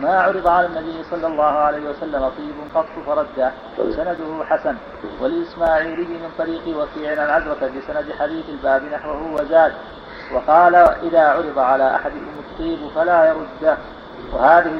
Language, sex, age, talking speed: Arabic, male, 50-69, 130 wpm